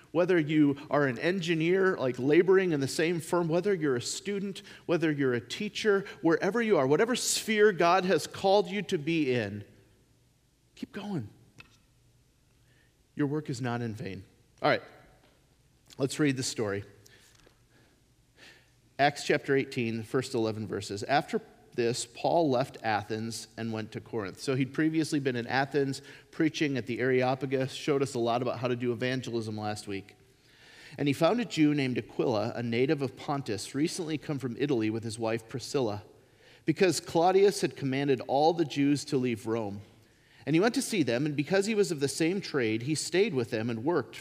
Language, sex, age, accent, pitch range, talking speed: English, male, 40-59, American, 120-165 Hz, 180 wpm